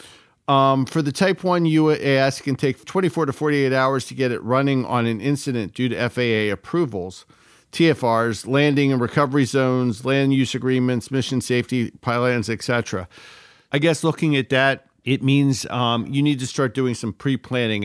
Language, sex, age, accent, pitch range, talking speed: English, male, 50-69, American, 120-140 Hz, 170 wpm